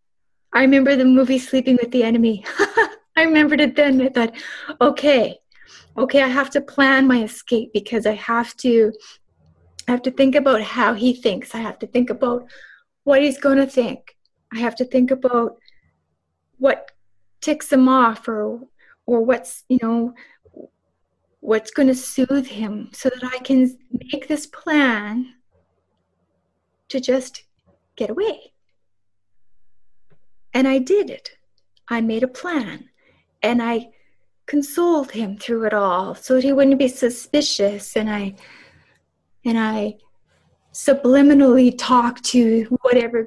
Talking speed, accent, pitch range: 140 wpm, American, 220-265 Hz